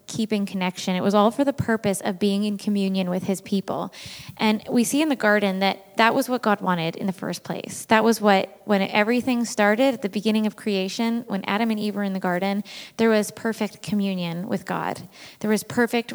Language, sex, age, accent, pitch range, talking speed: English, female, 20-39, American, 195-220 Hz, 220 wpm